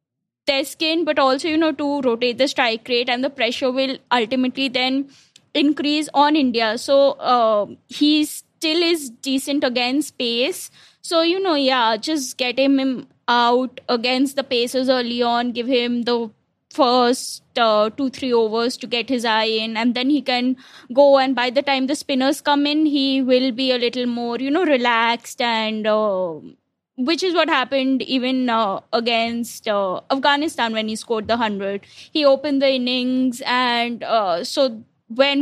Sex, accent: female, Indian